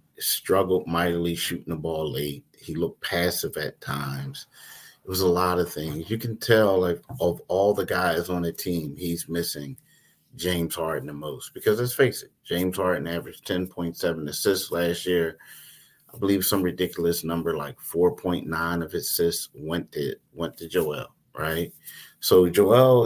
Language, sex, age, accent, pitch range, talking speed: English, male, 30-49, American, 85-110 Hz, 165 wpm